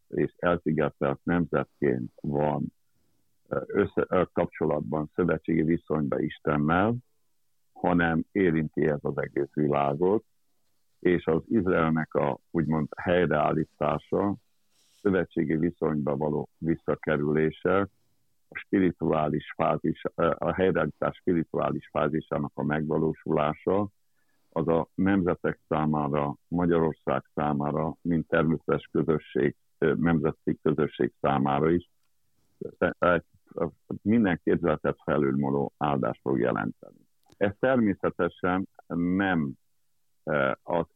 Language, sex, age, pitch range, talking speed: Hungarian, male, 60-79, 75-90 Hz, 80 wpm